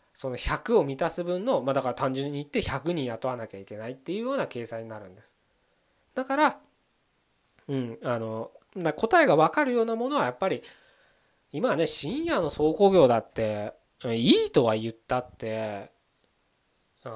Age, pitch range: 20-39, 125-195 Hz